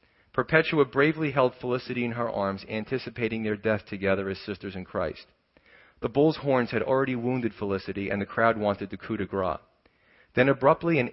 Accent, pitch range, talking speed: American, 105-130 Hz, 180 wpm